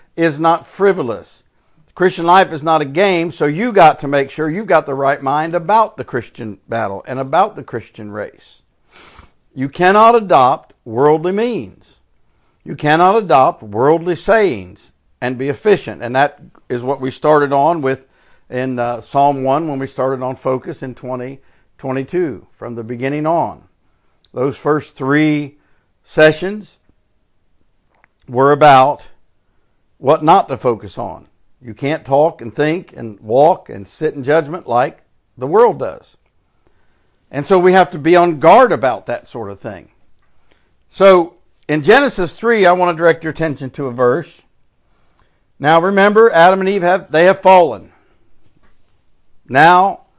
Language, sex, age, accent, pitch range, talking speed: English, male, 60-79, American, 130-175 Hz, 150 wpm